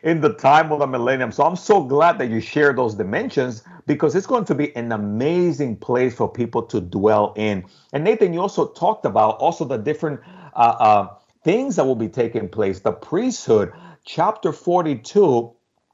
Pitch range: 120-165 Hz